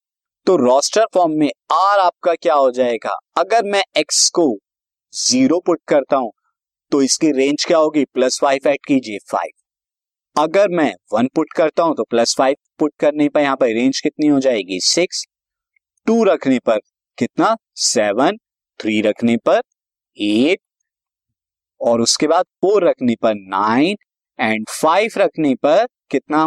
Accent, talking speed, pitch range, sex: native, 150 wpm, 140-200 Hz, male